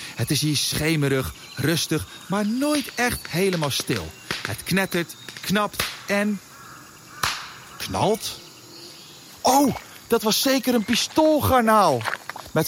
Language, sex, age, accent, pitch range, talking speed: Dutch, male, 40-59, Dutch, 135-210 Hz, 105 wpm